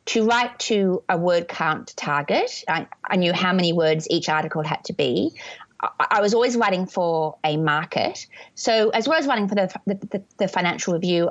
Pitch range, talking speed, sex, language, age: 175-235 Hz, 200 wpm, female, English, 30-49